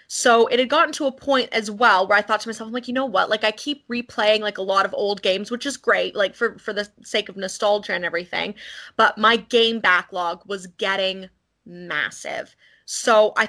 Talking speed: 225 wpm